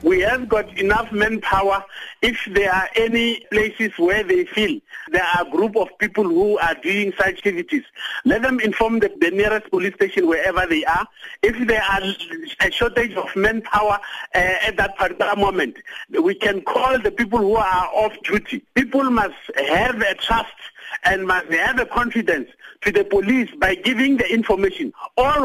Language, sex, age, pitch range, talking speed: English, male, 50-69, 155-225 Hz, 175 wpm